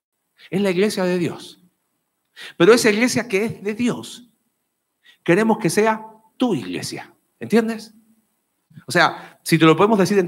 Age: 40-59